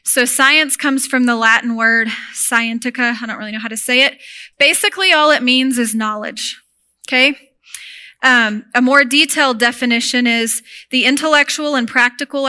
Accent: American